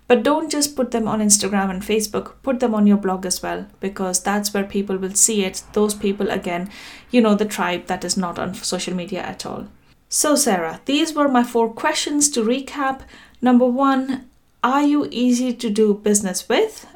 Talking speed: 200 wpm